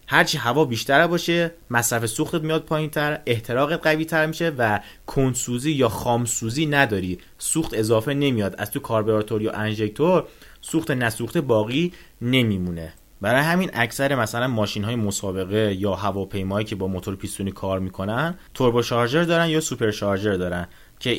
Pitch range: 100-140 Hz